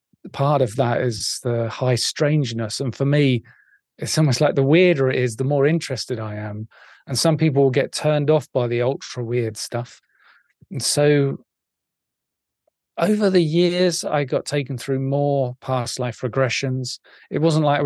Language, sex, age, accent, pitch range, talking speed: English, male, 40-59, British, 125-150 Hz, 170 wpm